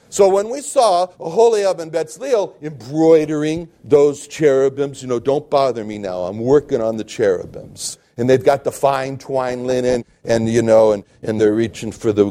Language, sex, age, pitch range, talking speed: English, male, 60-79, 130-205 Hz, 185 wpm